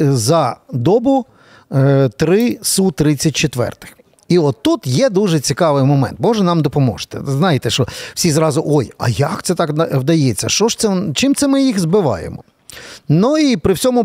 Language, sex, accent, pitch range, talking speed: Ukrainian, male, native, 140-190 Hz, 150 wpm